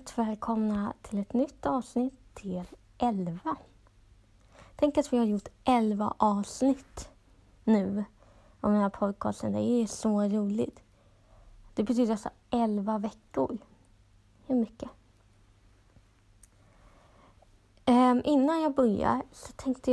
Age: 20-39